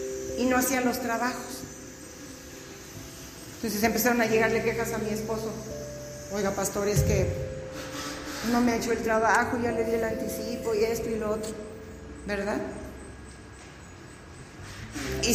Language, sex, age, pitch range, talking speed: Spanish, female, 40-59, 175-235 Hz, 135 wpm